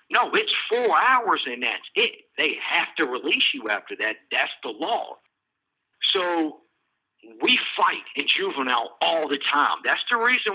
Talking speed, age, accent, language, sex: 160 wpm, 50-69, American, English, male